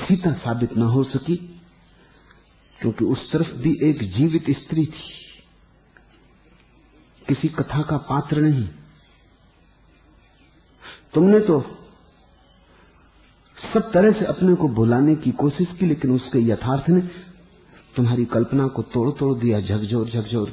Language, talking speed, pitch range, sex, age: English, 115 wpm, 115-150 Hz, male, 50-69